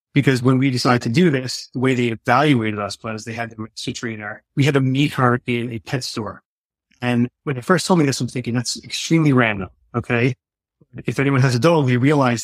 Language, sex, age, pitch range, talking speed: English, male, 30-49, 115-140 Hz, 220 wpm